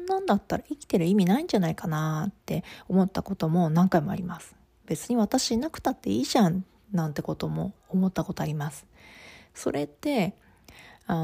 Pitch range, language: 160-235 Hz, Japanese